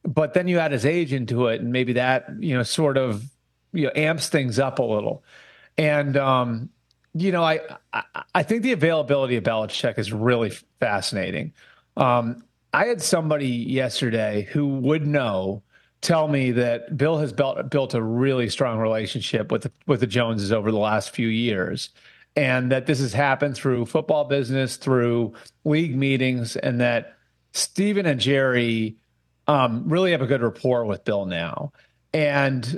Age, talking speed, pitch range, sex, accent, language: 30-49, 170 wpm, 120-155 Hz, male, American, English